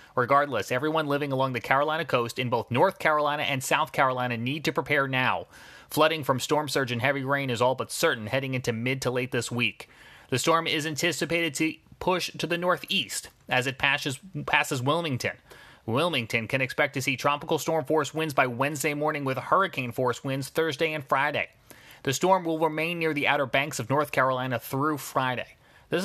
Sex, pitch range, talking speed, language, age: male, 130-160 Hz, 190 wpm, English, 30-49